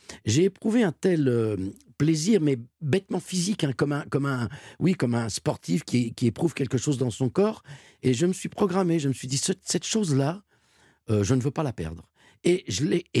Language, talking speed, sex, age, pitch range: French, 215 wpm, male, 50-69, 120-165 Hz